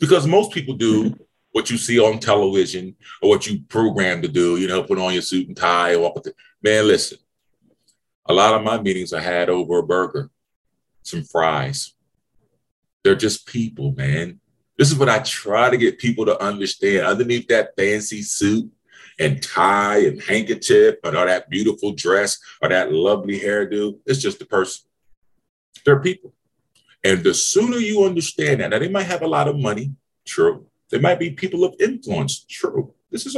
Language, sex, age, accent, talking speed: English, male, 30-49, American, 175 wpm